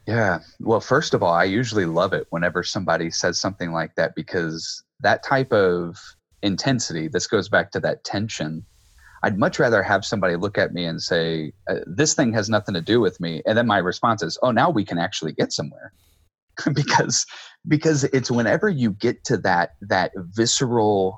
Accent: American